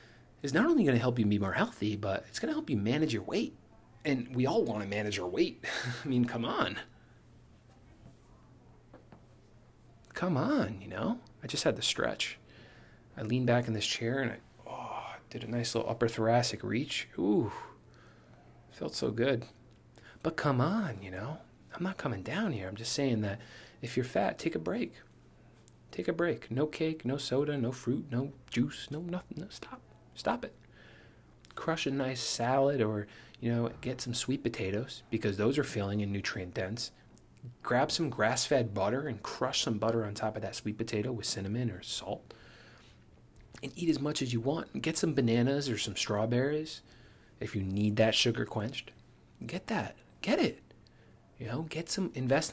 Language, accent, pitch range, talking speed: English, American, 110-135 Hz, 185 wpm